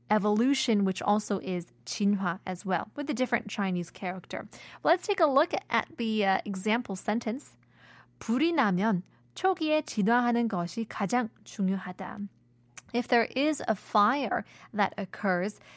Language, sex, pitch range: Korean, female, 195-245 Hz